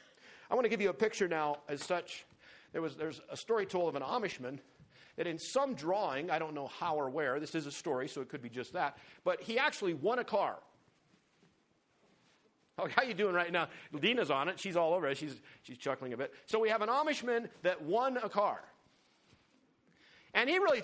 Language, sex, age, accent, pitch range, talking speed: English, male, 50-69, American, 140-190 Hz, 215 wpm